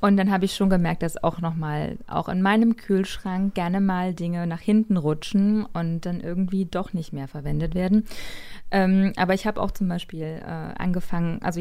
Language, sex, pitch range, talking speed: German, female, 165-195 Hz, 190 wpm